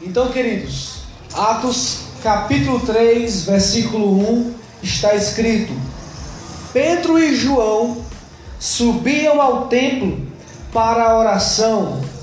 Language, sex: Portuguese, male